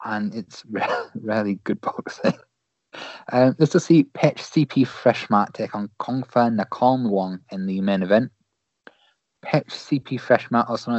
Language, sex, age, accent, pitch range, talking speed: English, male, 20-39, British, 100-125 Hz, 140 wpm